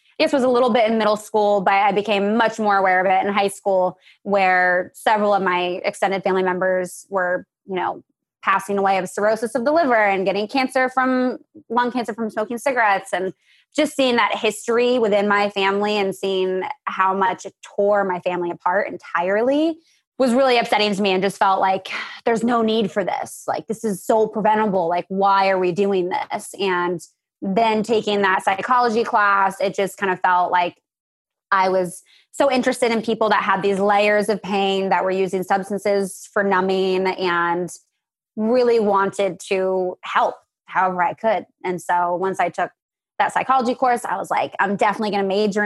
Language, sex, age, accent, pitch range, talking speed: English, female, 20-39, American, 185-225 Hz, 185 wpm